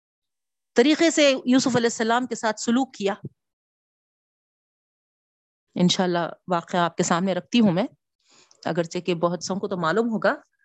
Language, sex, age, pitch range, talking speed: Urdu, female, 40-59, 185-255 Hz, 145 wpm